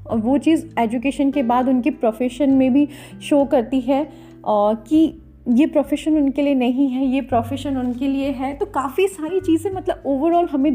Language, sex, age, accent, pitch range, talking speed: Hindi, female, 30-49, native, 230-290 Hz, 185 wpm